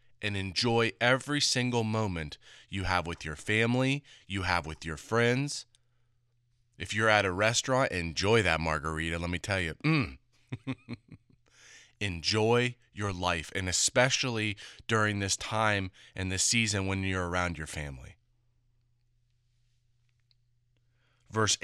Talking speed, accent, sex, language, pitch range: 125 wpm, American, male, English, 95-120 Hz